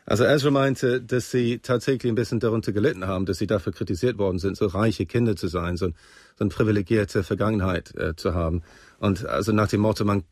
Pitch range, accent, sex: 95-115 Hz, German, male